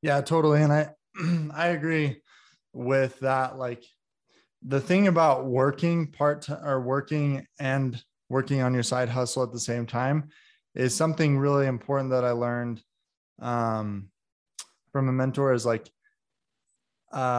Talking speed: 140 wpm